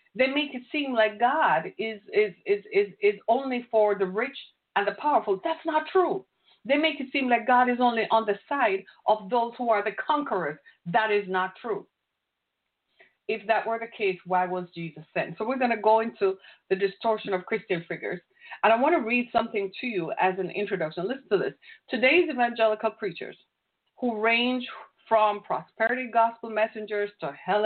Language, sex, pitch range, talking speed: English, female, 200-260 Hz, 190 wpm